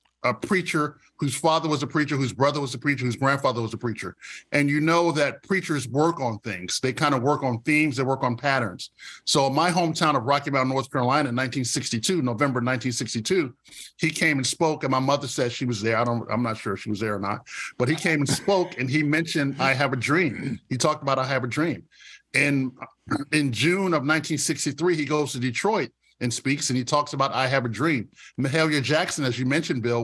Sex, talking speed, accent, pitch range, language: male, 220 wpm, American, 130-155 Hz, English